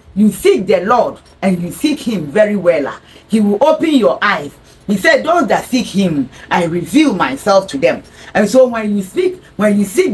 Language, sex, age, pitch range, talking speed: English, female, 40-59, 185-270 Hz, 200 wpm